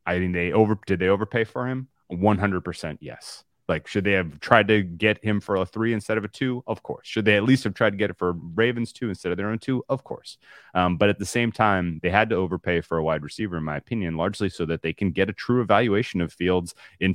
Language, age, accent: English, 30-49, American